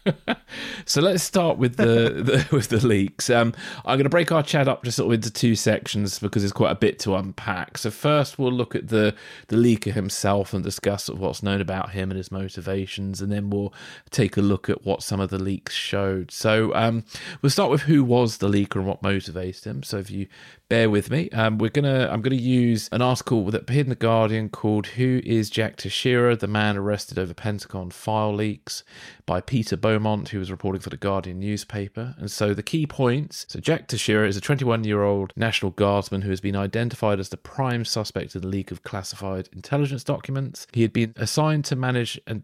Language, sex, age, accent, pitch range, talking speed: English, male, 30-49, British, 100-120 Hz, 215 wpm